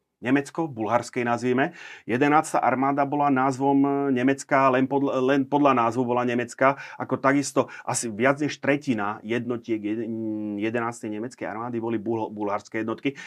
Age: 30-49